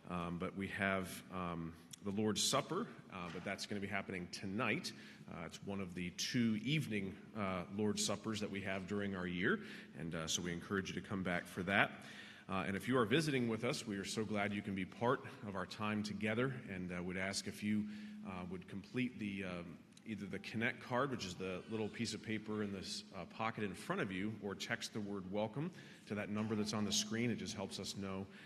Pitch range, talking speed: 90-110 Hz, 230 wpm